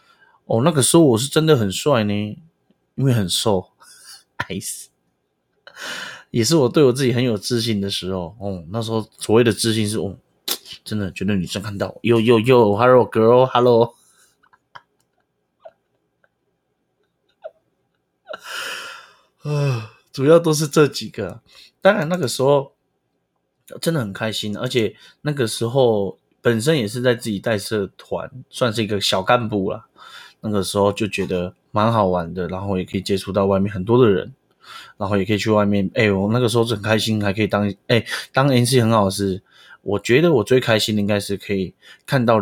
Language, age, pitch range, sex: Chinese, 20-39, 100-125 Hz, male